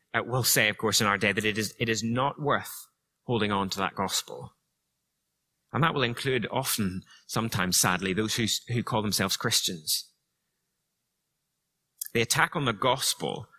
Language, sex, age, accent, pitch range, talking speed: English, male, 30-49, British, 100-130 Hz, 170 wpm